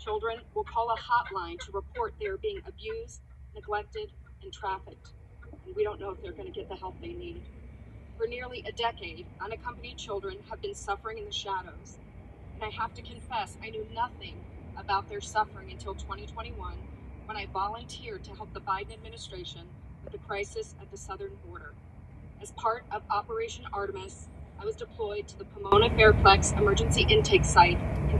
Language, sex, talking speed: English, female, 170 wpm